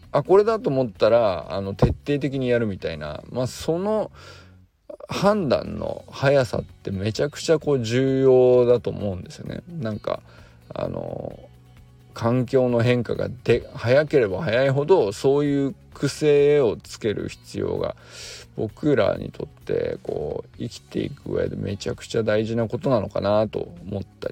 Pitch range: 100-135 Hz